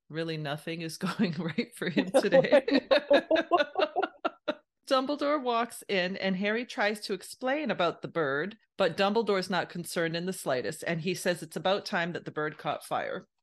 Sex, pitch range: female, 165-210 Hz